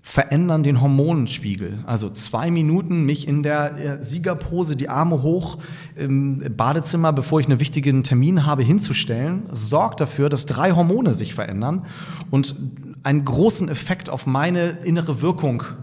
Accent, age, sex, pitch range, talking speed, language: German, 30-49, male, 120-155 Hz, 140 wpm, German